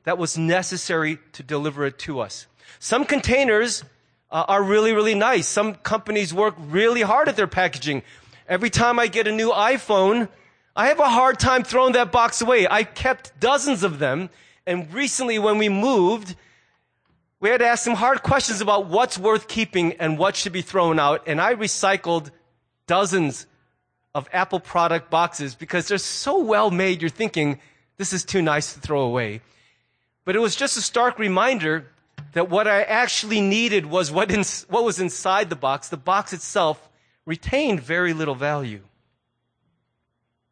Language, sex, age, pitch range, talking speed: English, male, 30-49, 155-220 Hz, 170 wpm